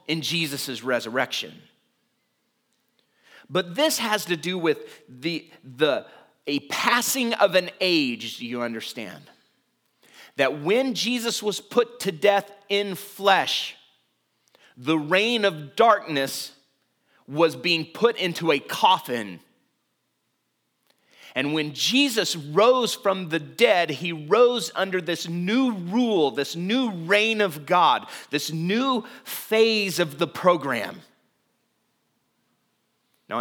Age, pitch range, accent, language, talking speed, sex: 30-49, 155-210 Hz, American, English, 115 wpm, male